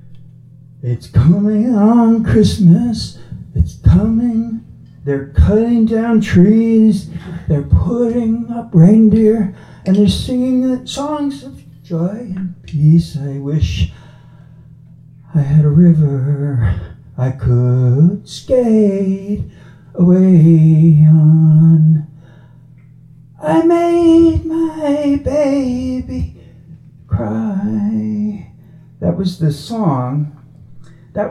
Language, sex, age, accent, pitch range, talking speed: English, male, 40-59, American, 135-180 Hz, 80 wpm